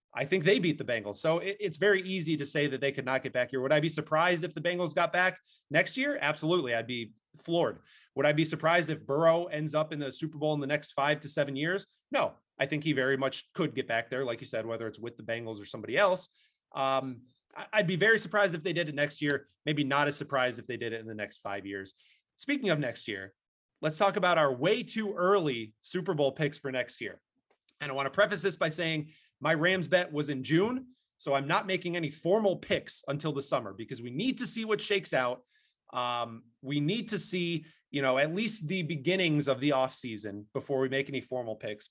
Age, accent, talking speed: 30-49, American, 240 wpm